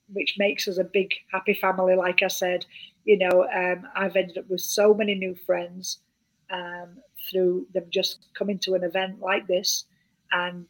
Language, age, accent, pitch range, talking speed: English, 40-59, British, 190-225 Hz, 180 wpm